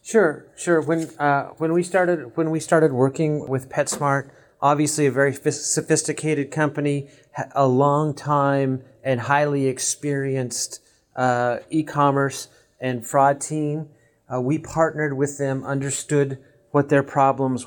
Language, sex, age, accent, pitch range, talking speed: English, male, 40-59, American, 130-150 Hz, 130 wpm